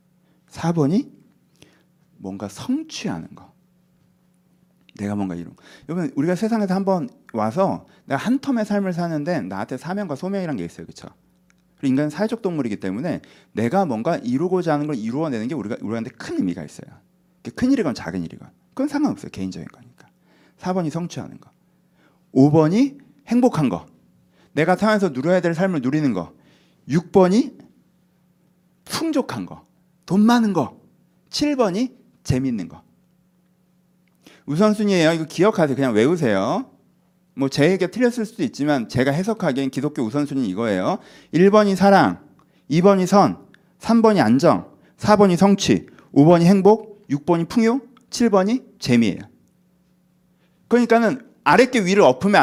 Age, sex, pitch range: 40-59, male, 165-215 Hz